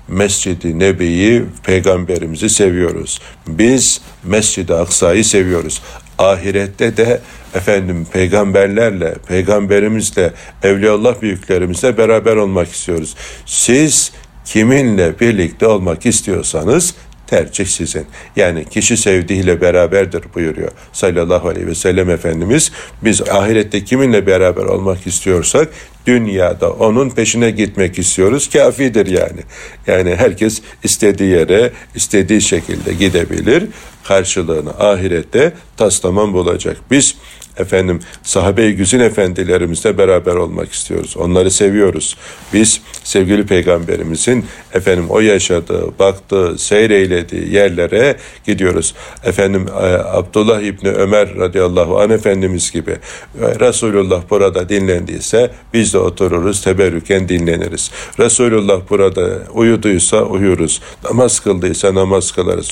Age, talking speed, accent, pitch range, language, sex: 60-79, 100 wpm, native, 90-110 Hz, Turkish, male